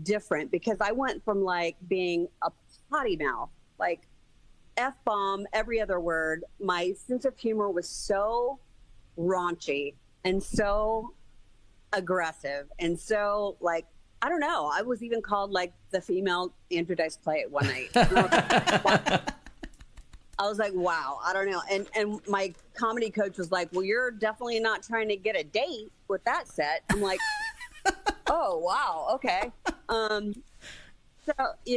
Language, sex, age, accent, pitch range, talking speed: English, female, 40-59, American, 170-220 Hz, 150 wpm